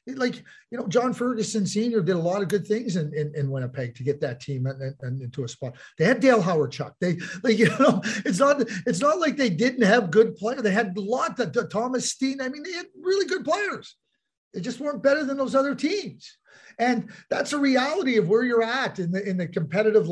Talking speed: 240 wpm